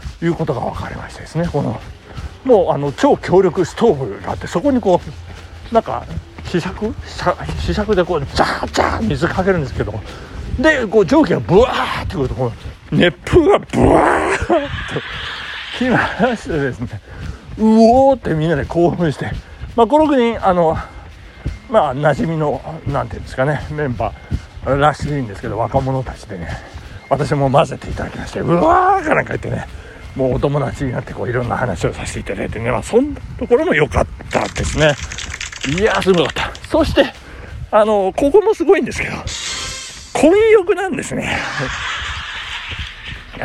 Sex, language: male, Japanese